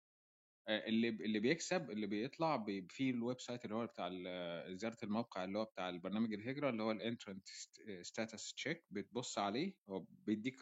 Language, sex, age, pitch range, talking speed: Arabic, male, 20-39, 95-120 Hz, 155 wpm